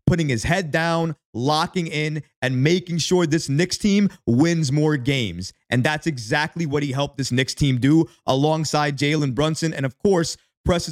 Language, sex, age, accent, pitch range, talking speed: English, male, 30-49, American, 130-175 Hz, 175 wpm